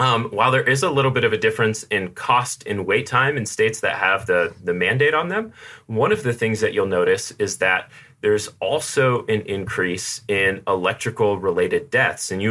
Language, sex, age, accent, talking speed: English, male, 30-49, American, 200 wpm